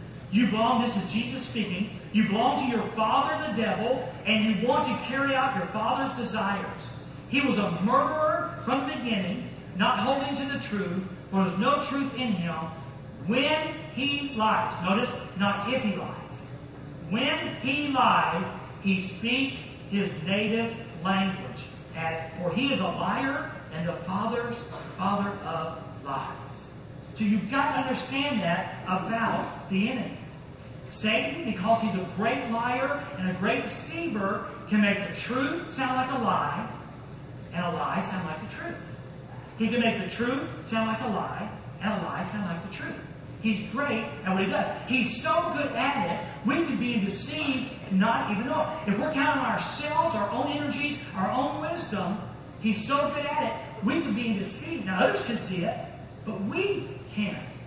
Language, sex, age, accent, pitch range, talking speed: English, male, 40-59, American, 180-255 Hz, 175 wpm